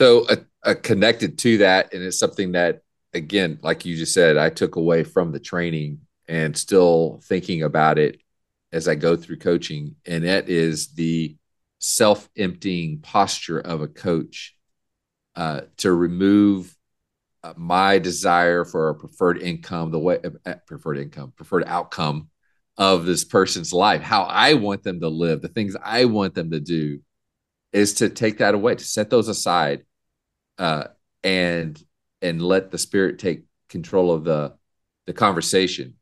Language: English